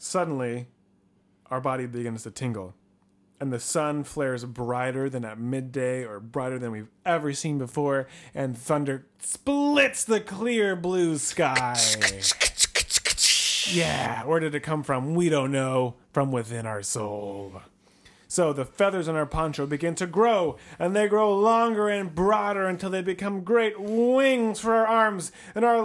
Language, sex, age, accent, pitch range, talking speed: English, male, 30-49, American, 130-210 Hz, 155 wpm